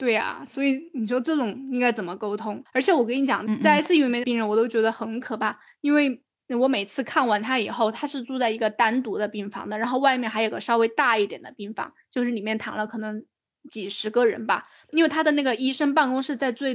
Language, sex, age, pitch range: Chinese, female, 20-39, 220-270 Hz